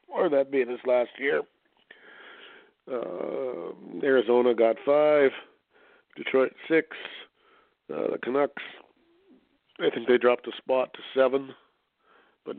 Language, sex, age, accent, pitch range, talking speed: English, male, 50-69, American, 110-135 Hz, 120 wpm